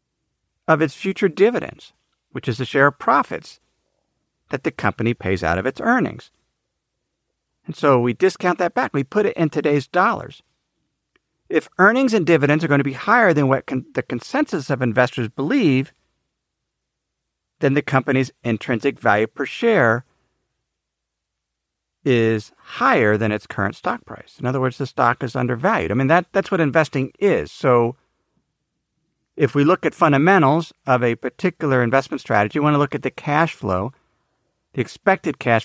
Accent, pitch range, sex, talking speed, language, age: American, 125-165 Hz, male, 165 wpm, English, 50-69